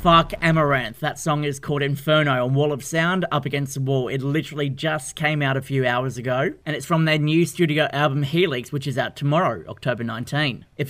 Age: 30-49